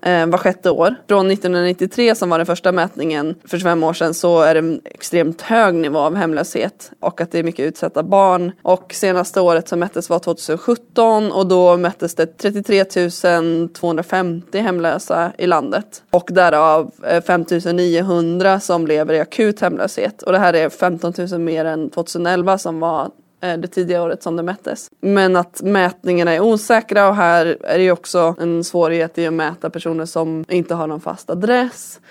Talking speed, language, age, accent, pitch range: 175 wpm, Swedish, 20-39, native, 170-195 Hz